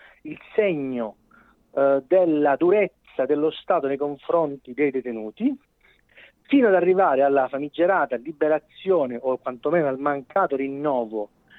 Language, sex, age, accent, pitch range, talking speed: Italian, male, 40-59, native, 145-200 Hz, 115 wpm